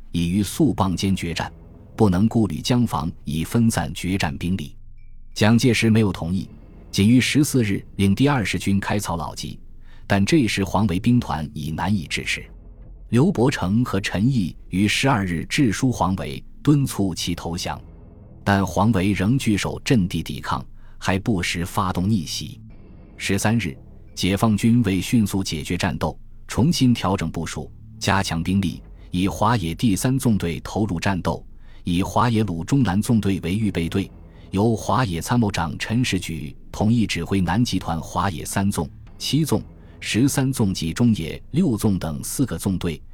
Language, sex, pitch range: Chinese, male, 85-110 Hz